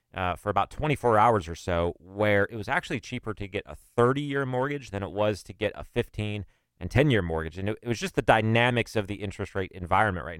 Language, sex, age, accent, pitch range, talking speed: English, male, 30-49, American, 95-115 Hz, 235 wpm